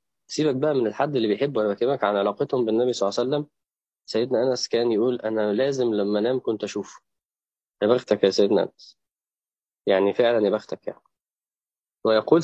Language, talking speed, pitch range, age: Arabic, 175 wpm, 110-150 Hz, 20-39